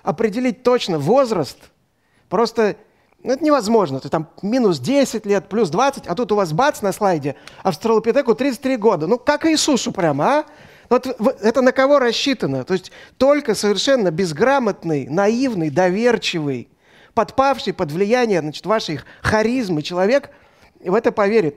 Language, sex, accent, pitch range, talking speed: Russian, male, native, 175-240 Hz, 145 wpm